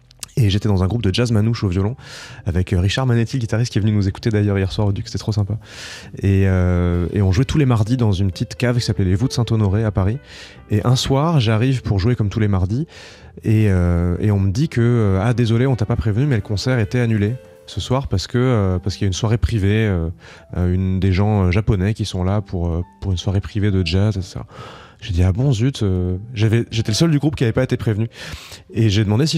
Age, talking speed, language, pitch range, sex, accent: 20-39, 250 wpm, French, 100-125 Hz, male, French